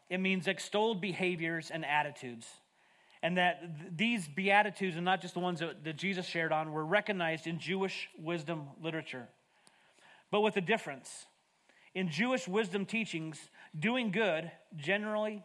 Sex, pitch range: male, 155-195 Hz